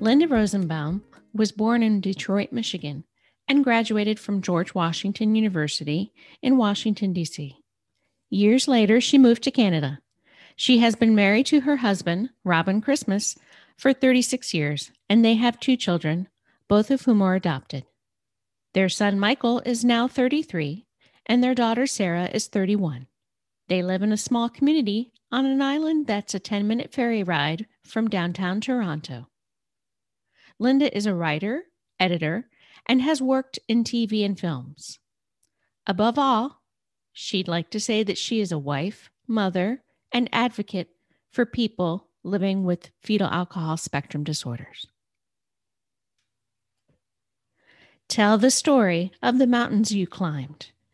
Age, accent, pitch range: 50-69, American, 160-235 Hz